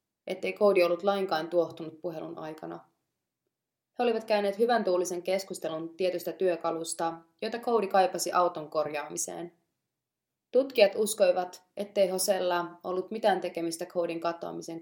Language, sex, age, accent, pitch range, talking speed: Finnish, female, 20-39, native, 175-205 Hz, 115 wpm